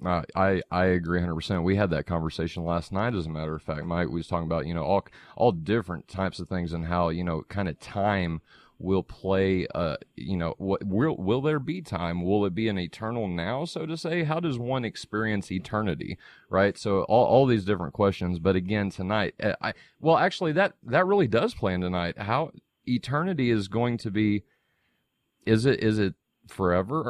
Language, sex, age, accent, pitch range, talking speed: English, male, 30-49, American, 90-120 Hz, 205 wpm